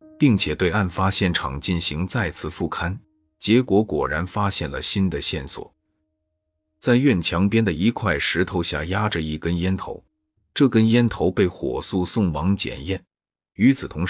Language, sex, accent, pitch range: Chinese, male, native, 85-110 Hz